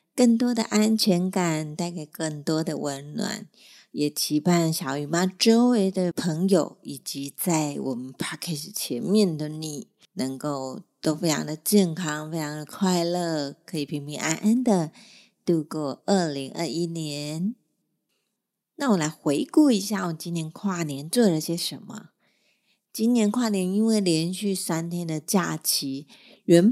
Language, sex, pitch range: Chinese, female, 150-190 Hz